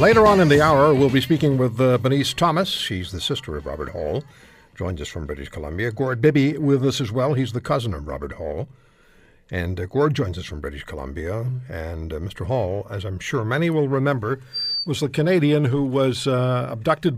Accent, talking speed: American, 210 wpm